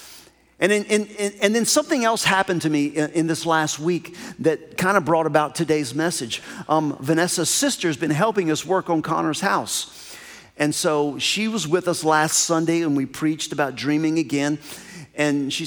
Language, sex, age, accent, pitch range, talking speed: English, male, 40-59, American, 145-185 Hz, 180 wpm